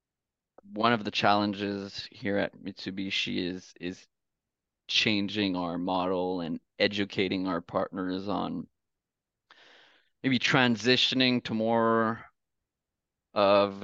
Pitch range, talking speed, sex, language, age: 100-120 Hz, 95 wpm, male, English, 20-39